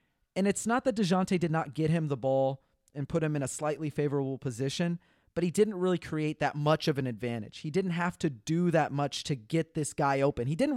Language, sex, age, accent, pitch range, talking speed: English, male, 30-49, American, 140-175 Hz, 240 wpm